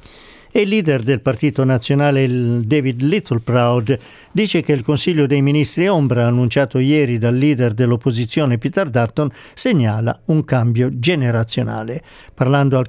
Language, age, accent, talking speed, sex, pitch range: Italian, 50-69, native, 130 wpm, male, 125-160 Hz